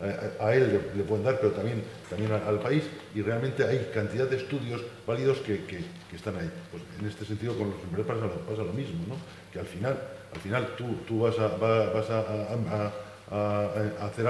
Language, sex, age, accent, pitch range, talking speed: Spanish, male, 50-69, Spanish, 100-120 Hz, 225 wpm